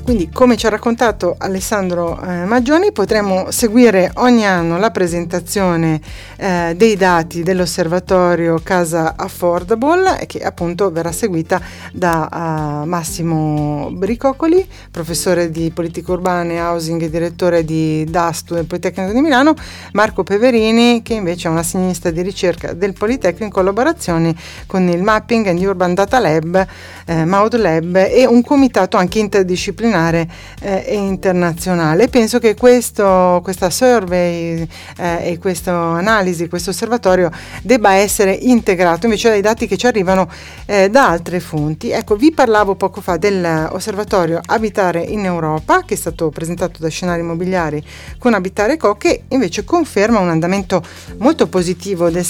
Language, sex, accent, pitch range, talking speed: Italian, female, native, 170-215 Hz, 140 wpm